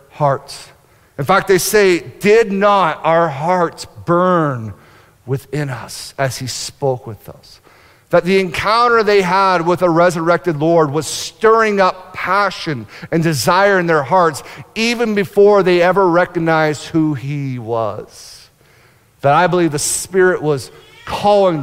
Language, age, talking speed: English, 50-69, 140 wpm